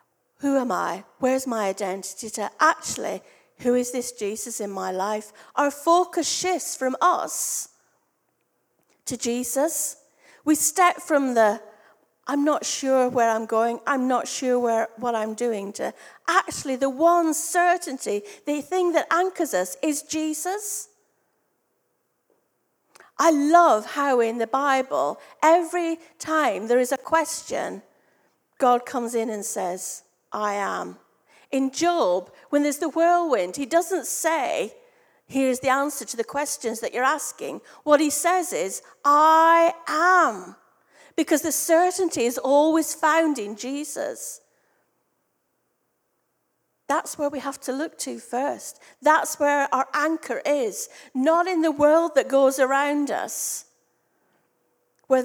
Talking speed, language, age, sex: 135 wpm, English, 40-59, female